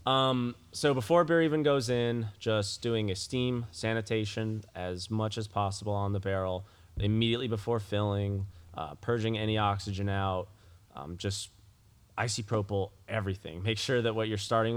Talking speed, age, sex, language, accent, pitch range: 145 wpm, 20-39, male, English, American, 95-115 Hz